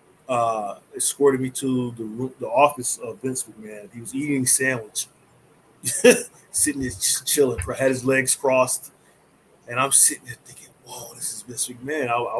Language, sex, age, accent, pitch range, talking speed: English, male, 20-39, American, 120-145 Hz, 170 wpm